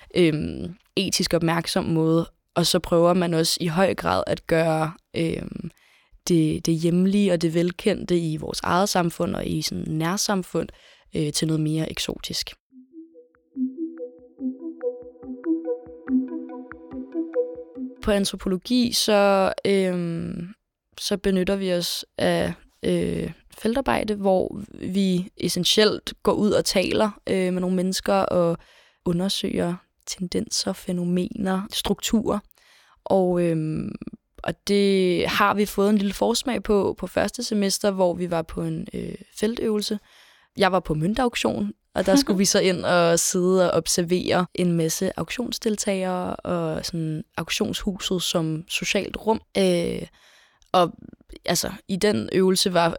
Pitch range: 170-205 Hz